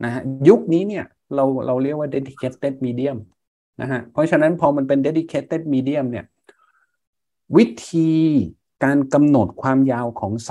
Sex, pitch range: male, 110-140 Hz